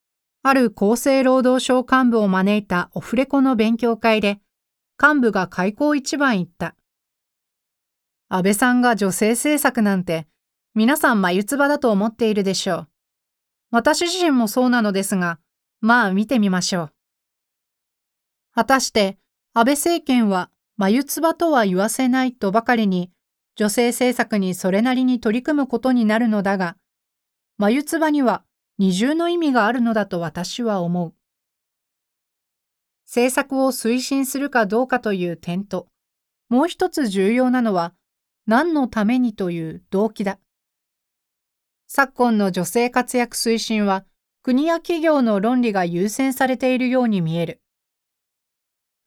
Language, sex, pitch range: Japanese, female, 195-260 Hz